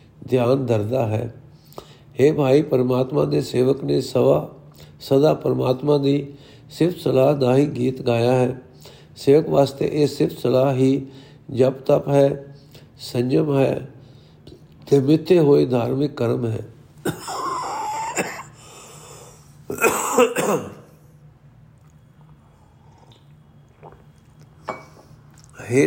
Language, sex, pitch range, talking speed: Punjabi, male, 130-145 Hz, 85 wpm